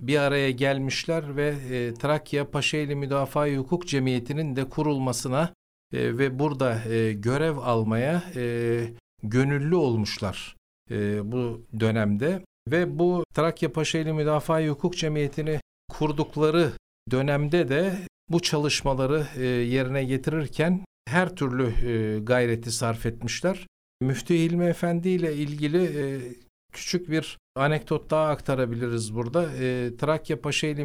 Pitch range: 125-160 Hz